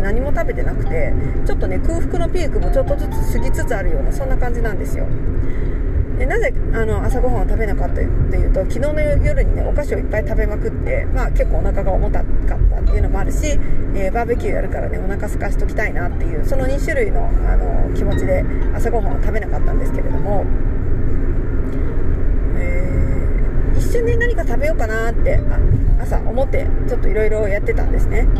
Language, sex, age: Japanese, female, 40-59